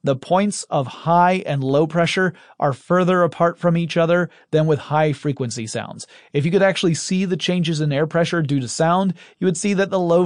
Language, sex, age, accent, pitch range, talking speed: English, male, 30-49, American, 135-175 Hz, 215 wpm